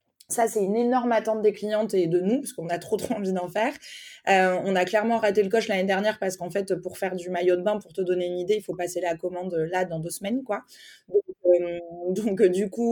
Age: 20-39